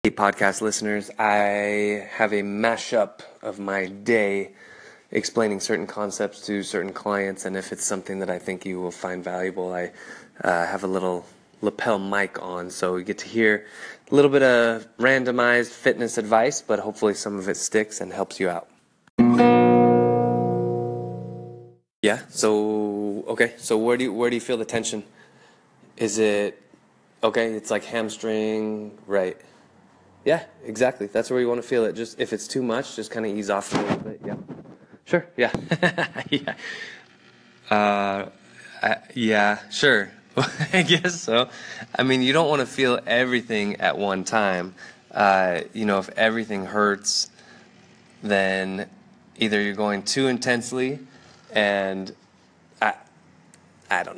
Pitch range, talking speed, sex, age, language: 95-120 Hz, 150 wpm, male, 20-39, English